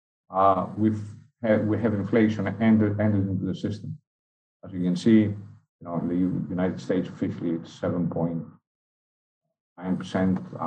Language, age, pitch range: English, 50-69, 90-110 Hz